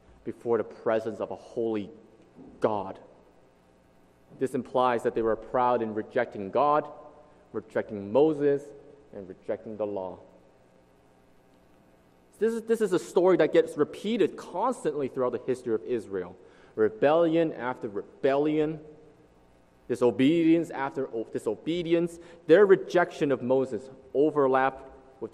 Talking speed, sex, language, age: 115 wpm, male, English, 30-49